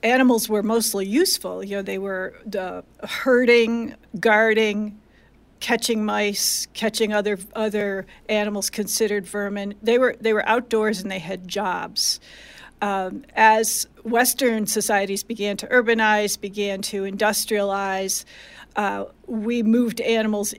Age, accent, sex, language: 50-69, American, female, English